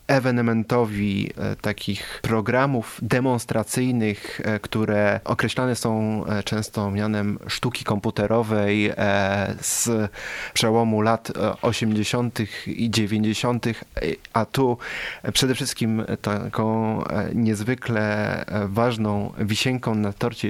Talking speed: 80 wpm